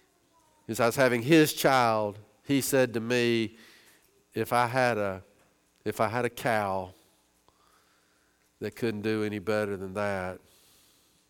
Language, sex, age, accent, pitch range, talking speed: English, male, 50-69, American, 95-115 Hz, 140 wpm